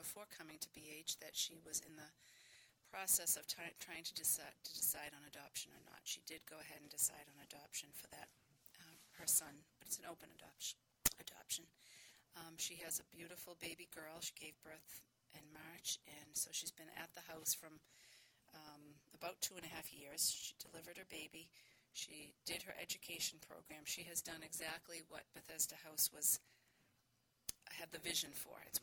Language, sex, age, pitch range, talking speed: English, female, 40-59, 150-165 Hz, 185 wpm